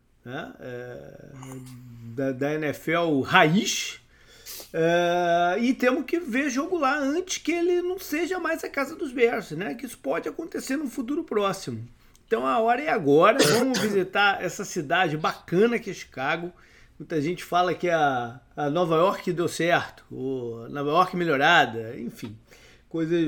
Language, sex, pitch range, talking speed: Portuguese, male, 130-210 Hz, 155 wpm